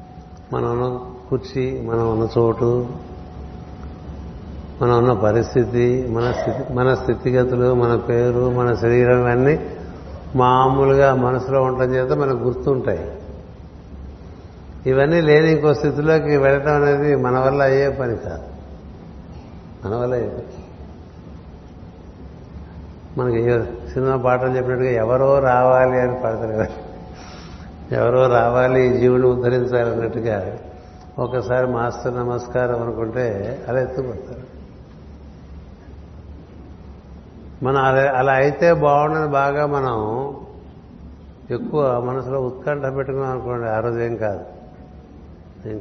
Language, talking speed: Telugu, 95 wpm